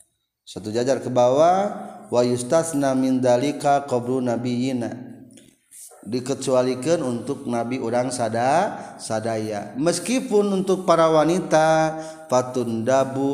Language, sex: Indonesian, male